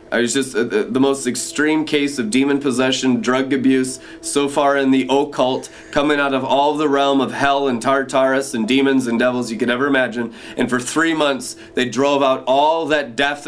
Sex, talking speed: male, 205 wpm